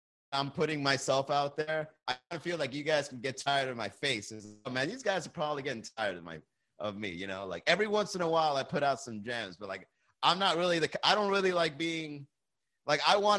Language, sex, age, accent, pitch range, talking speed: English, male, 30-49, American, 135-180 Hz, 245 wpm